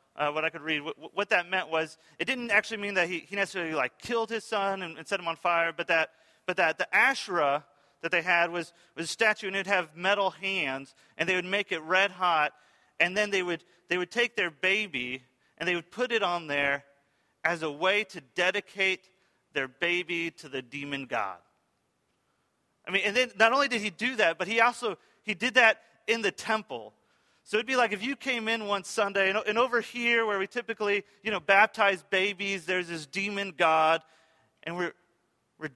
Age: 30-49